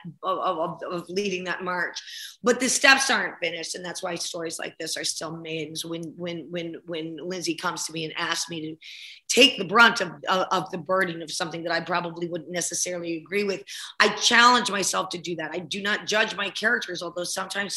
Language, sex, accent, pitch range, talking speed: English, female, American, 170-220 Hz, 210 wpm